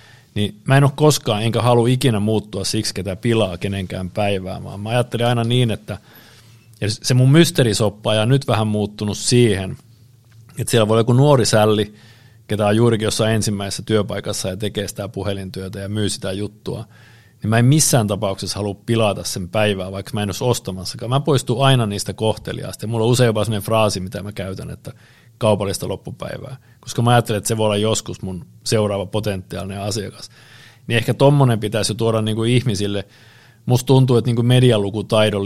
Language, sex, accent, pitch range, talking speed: Finnish, male, native, 100-120 Hz, 180 wpm